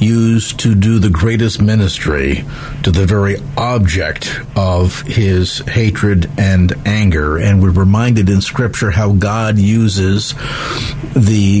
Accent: American